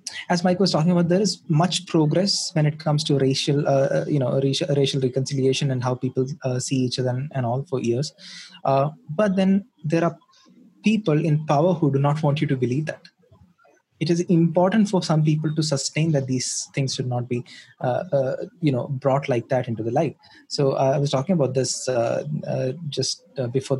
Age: 20-39